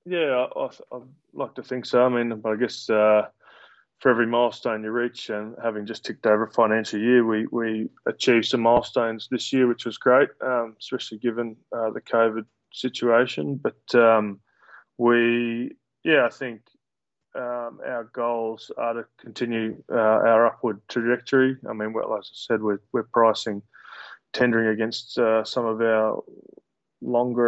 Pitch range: 110-120 Hz